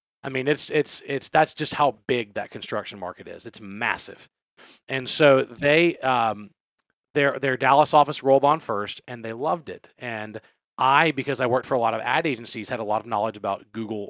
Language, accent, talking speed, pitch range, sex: English, American, 205 wpm, 115-150 Hz, male